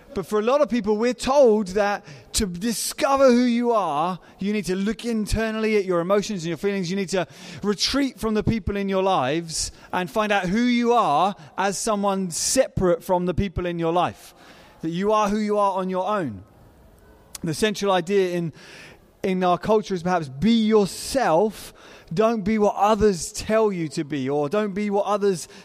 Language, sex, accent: English, male, British